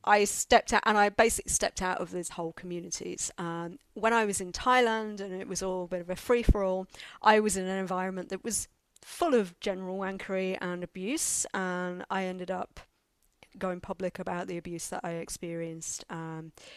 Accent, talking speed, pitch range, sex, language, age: British, 190 wpm, 175-210 Hz, female, English, 40-59